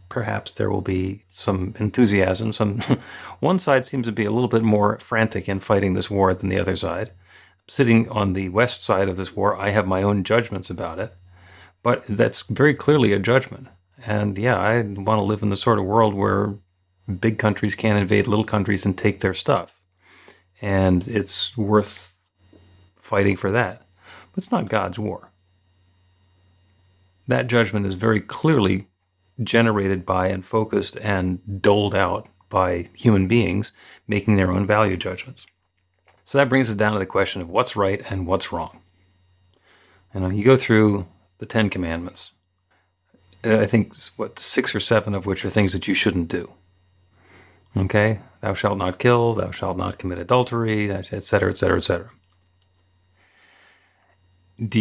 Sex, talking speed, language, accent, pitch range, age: male, 165 wpm, English, American, 95-110 Hz, 40-59